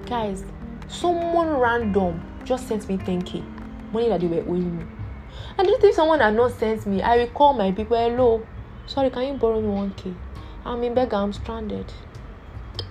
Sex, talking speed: female, 170 wpm